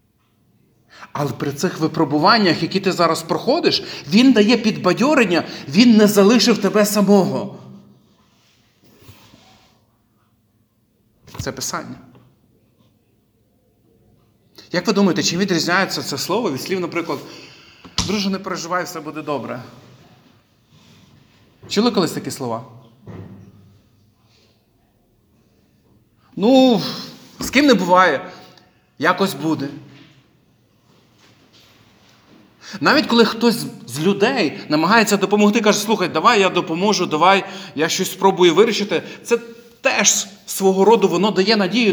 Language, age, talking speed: Ukrainian, 40-59, 100 wpm